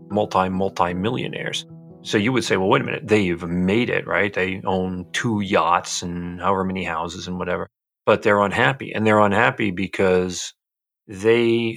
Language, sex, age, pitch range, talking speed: English, male, 40-59, 95-110 Hz, 170 wpm